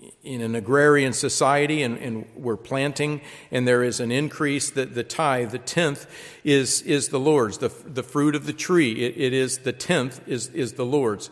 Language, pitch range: English, 130-160 Hz